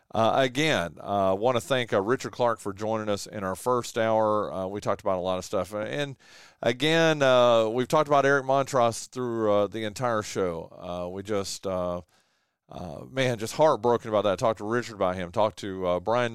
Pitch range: 100-130 Hz